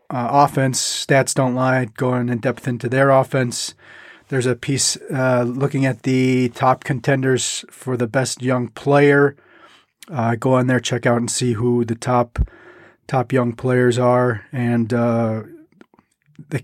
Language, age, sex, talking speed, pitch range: English, 30-49, male, 155 wpm, 120-135 Hz